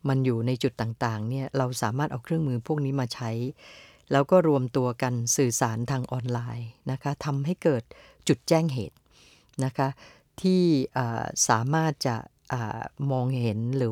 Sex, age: female, 60-79